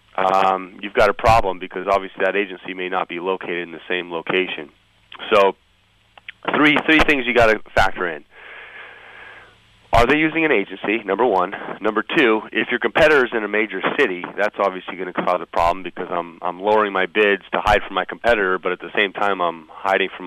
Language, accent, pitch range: English, American, 90-110 Hz